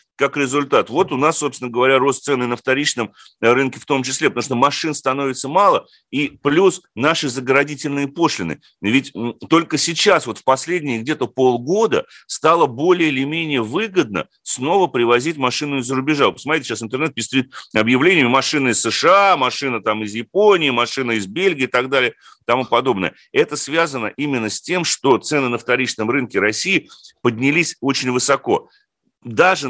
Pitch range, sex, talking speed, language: 120-160 Hz, male, 155 wpm, Russian